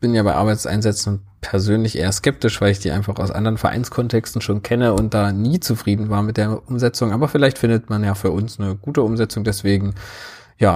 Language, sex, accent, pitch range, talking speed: German, male, German, 100-115 Hz, 200 wpm